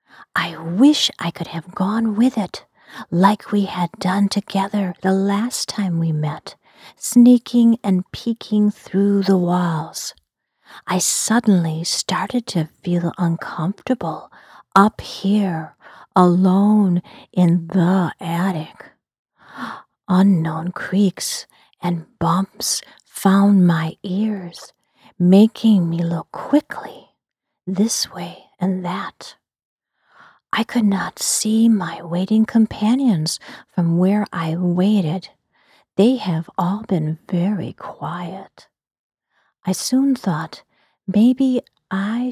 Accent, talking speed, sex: American, 105 wpm, female